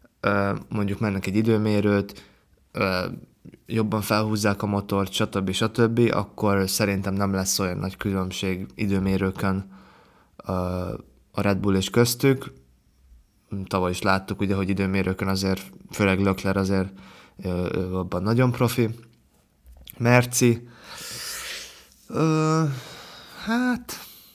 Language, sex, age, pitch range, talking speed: Hungarian, male, 20-39, 95-115 Hz, 95 wpm